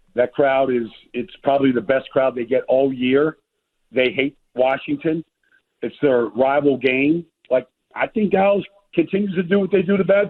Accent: American